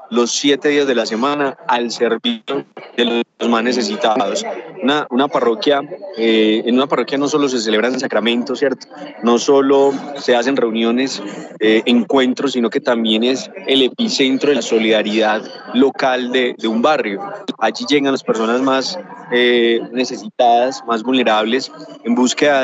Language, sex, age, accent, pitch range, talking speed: Spanish, male, 20-39, Colombian, 115-140 Hz, 150 wpm